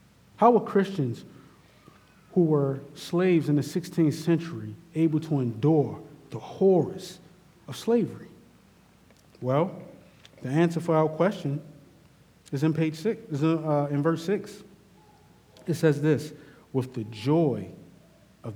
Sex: male